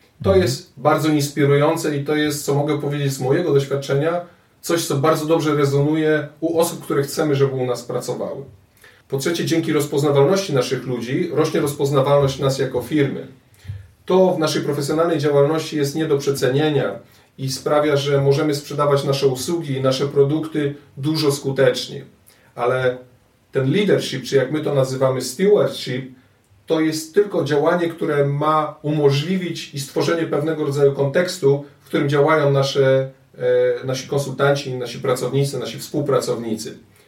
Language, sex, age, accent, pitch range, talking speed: Polish, male, 40-59, native, 135-155 Hz, 140 wpm